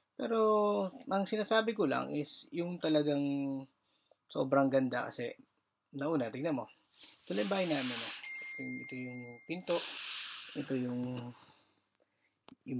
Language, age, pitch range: Filipino, 20-39, 130-175 Hz